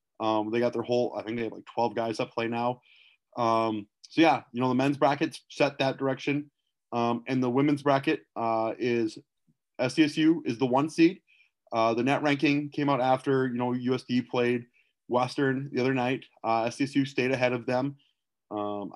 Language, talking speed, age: English, 190 wpm, 30-49